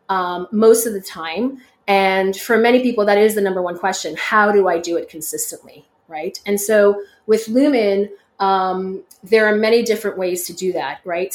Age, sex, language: 30-49, female, English